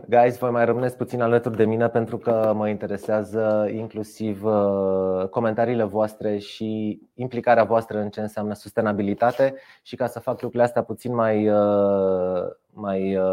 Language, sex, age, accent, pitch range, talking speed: Romanian, male, 30-49, native, 100-120 Hz, 130 wpm